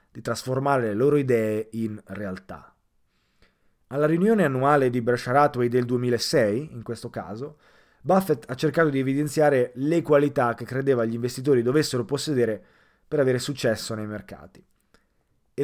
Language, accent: Italian, native